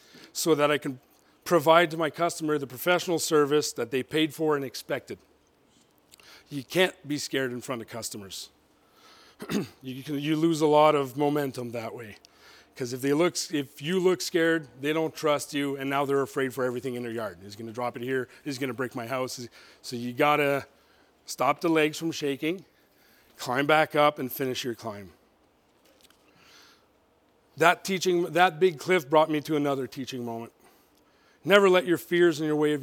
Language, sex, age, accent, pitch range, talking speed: English, male, 40-59, American, 135-170 Hz, 185 wpm